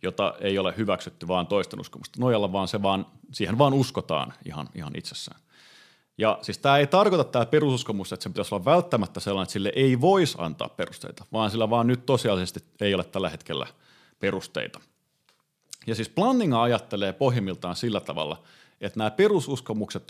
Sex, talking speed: male, 165 wpm